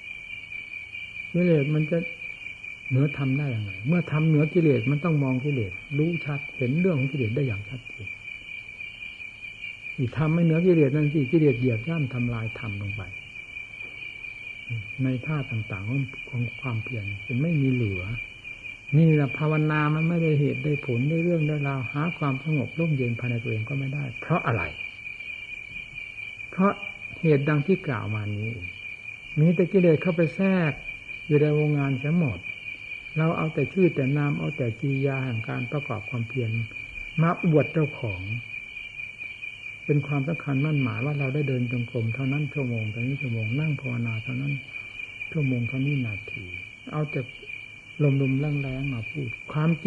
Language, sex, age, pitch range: Thai, male, 60-79, 120-155 Hz